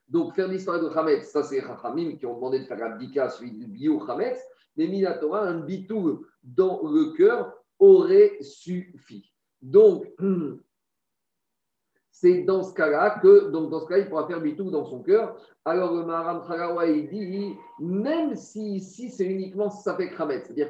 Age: 50-69